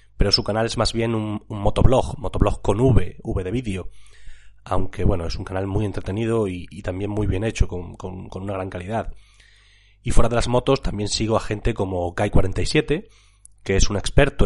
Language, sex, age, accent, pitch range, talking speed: Spanish, male, 30-49, Spanish, 100-115 Hz, 205 wpm